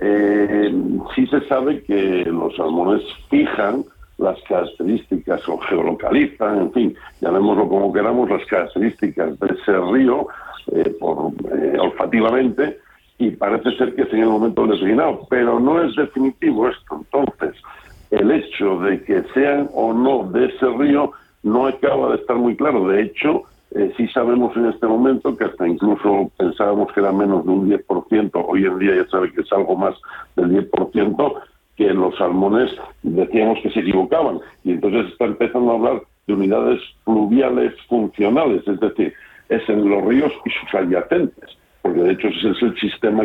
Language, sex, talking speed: Spanish, male, 170 wpm